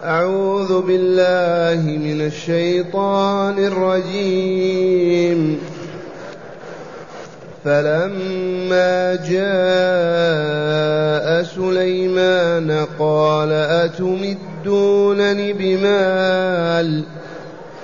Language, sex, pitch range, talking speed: Arabic, male, 170-195 Hz, 35 wpm